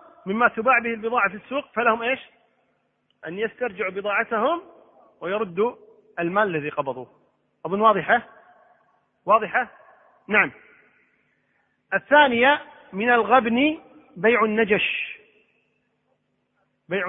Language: Arabic